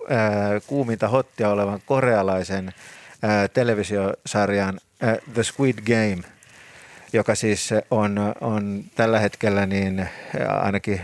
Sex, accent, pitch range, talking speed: male, native, 100-115 Hz, 85 wpm